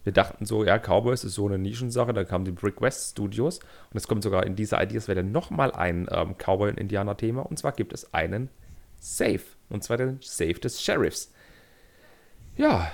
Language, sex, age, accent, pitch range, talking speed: German, male, 40-59, German, 100-130 Hz, 190 wpm